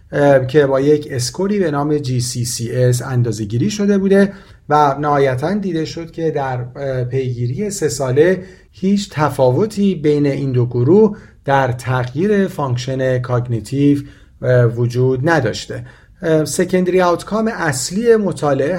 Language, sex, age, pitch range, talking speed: Persian, male, 40-59, 125-165 Hz, 110 wpm